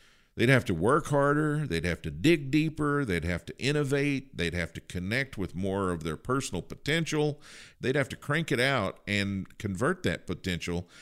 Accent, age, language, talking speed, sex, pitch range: American, 50-69, English, 185 wpm, male, 90-140 Hz